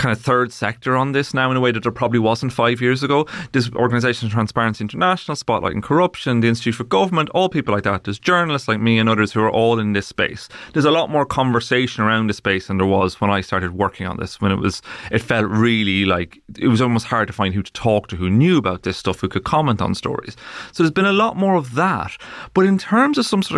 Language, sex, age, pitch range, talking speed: English, male, 30-49, 105-135 Hz, 260 wpm